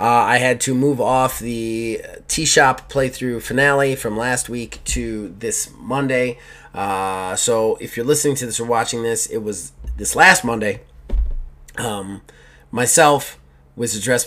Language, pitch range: English, 100-135 Hz